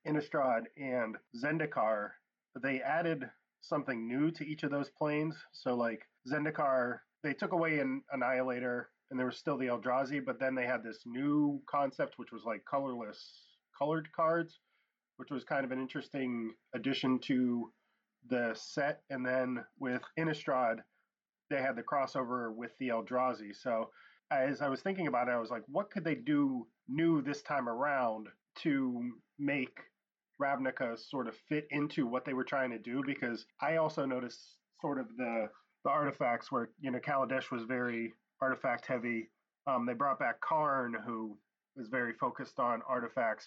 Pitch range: 125-150 Hz